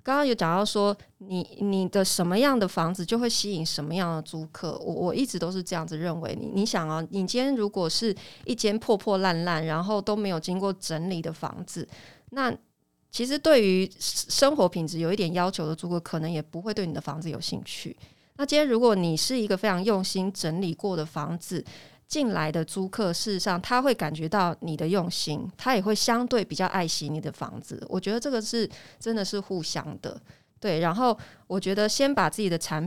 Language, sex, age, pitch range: Chinese, female, 20-39, 165-215 Hz